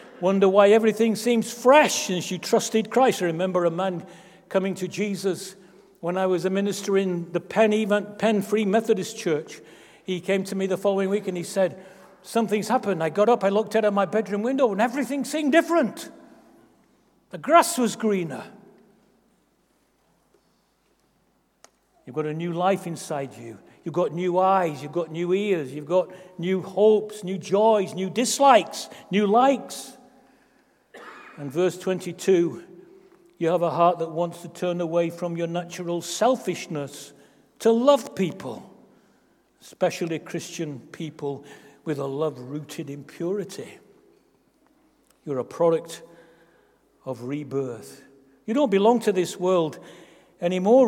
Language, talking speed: English, 145 wpm